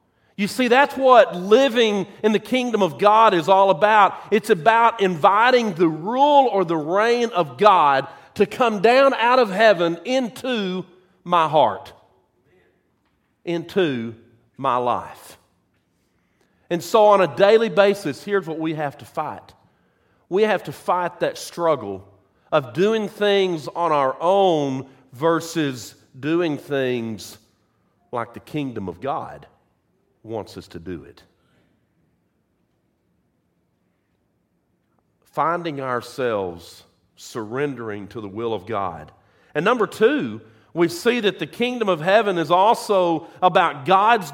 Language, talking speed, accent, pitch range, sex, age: English, 125 wpm, American, 130-205 Hz, male, 40-59